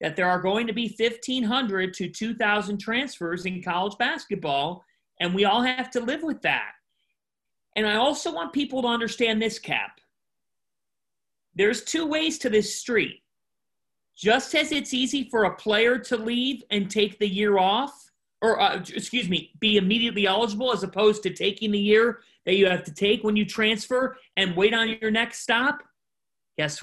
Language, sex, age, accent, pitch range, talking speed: English, male, 40-59, American, 170-235 Hz, 175 wpm